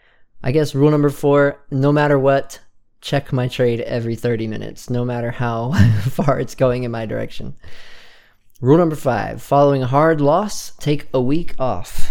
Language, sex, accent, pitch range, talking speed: English, male, American, 115-145 Hz, 170 wpm